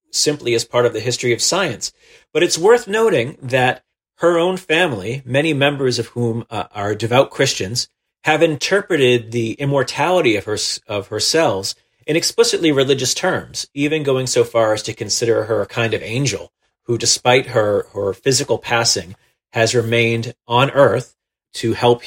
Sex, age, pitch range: male, 40-59, 110-140 Hz